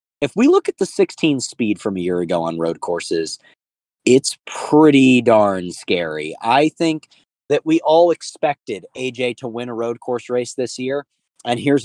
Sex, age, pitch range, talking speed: male, 30-49, 120-160 Hz, 175 wpm